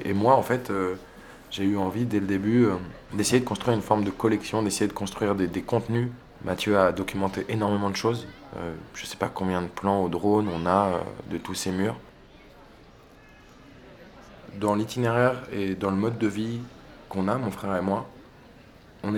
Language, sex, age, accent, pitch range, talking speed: French, male, 20-39, French, 95-110 Hz, 195 wpm